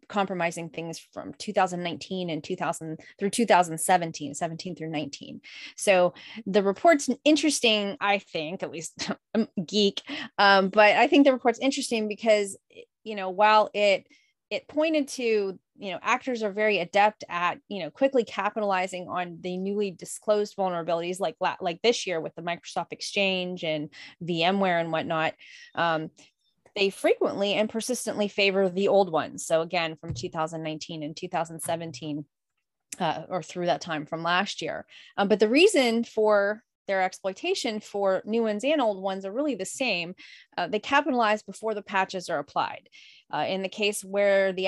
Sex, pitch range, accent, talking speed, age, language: female, 175-220 Hz, American, 160 wpm, 20-39, English